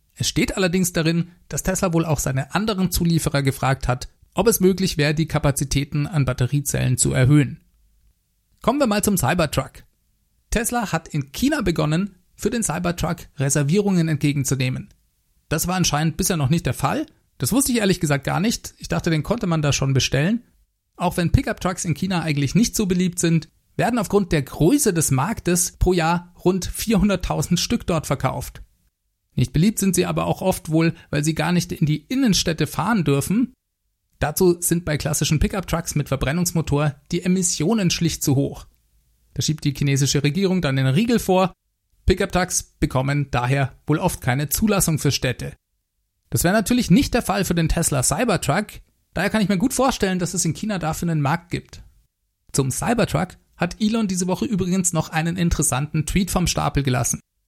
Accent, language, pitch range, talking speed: German, German, 145-185 Hz, 175 wpm